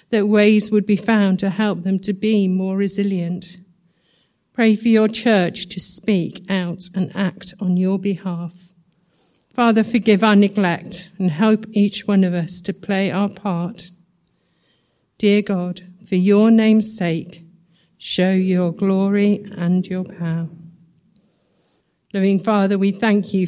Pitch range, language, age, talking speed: 180-205 Hz, English, 50-69, 140 wpm